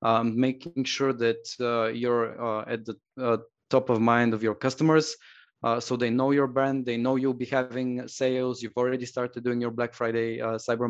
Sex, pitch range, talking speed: male, 115-130 Hz, 205 wpm